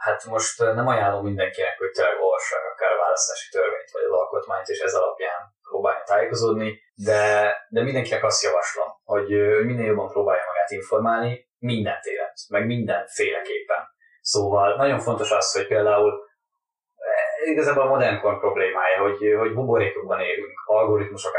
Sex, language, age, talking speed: male, Hungarian, 20-39, 135 wpm